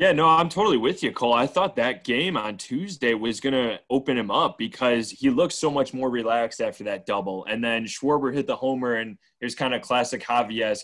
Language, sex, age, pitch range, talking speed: English, male, 20-39, 110-140 Hz, 225 wpm